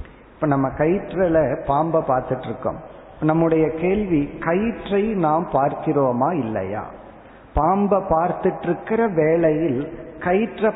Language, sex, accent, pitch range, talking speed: Tamil, male, native, 140-185 Hz, 95 wpm